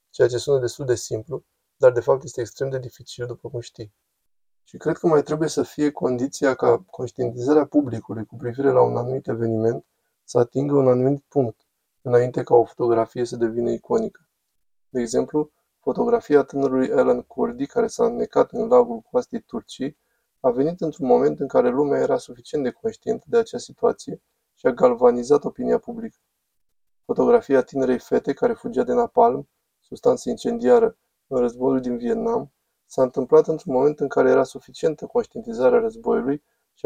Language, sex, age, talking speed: Romanian, male, 20-39, 165 wpm